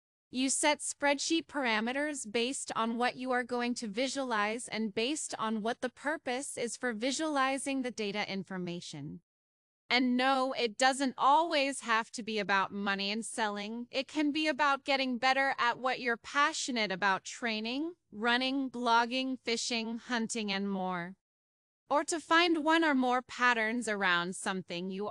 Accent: American